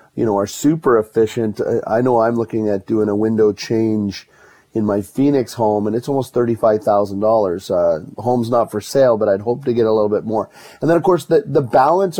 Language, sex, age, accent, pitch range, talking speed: English, male, 30-49, American, 105-125 Hz, 210 wpm